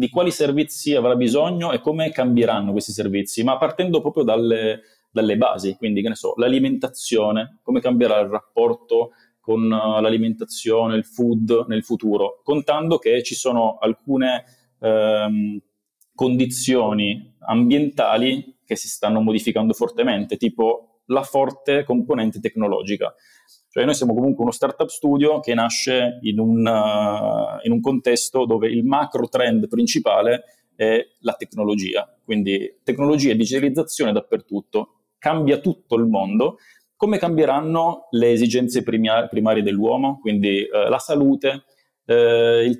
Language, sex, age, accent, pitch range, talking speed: Italian, male, 30-49, native, 115-145 Hz, 125 wpm